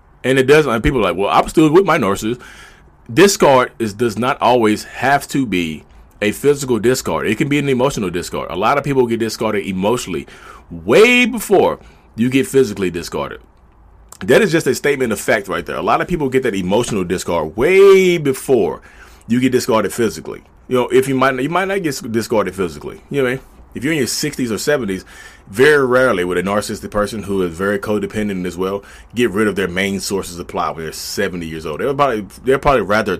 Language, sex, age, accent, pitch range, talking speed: English, male, 30-49, American, 95-130 Hz, 215 wpm